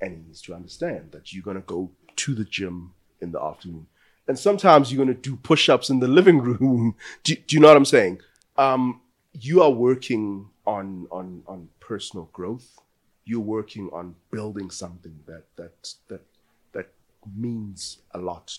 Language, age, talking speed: English, 30-49, 180 wpm